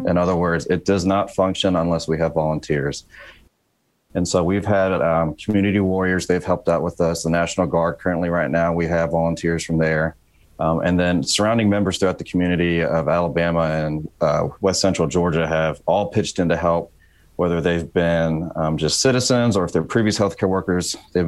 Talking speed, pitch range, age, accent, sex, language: 190 wpm, 85-95 Hz, 30-49, American, male, English